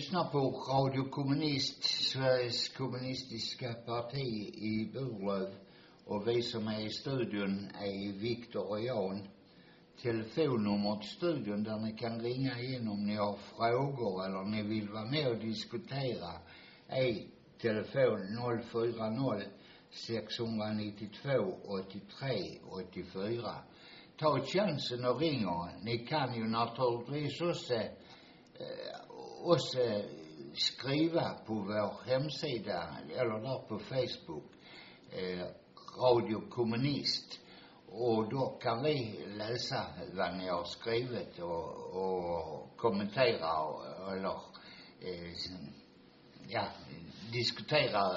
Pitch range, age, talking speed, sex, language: 105-130 Hz, 60-79, 105 wpm, male, Swedish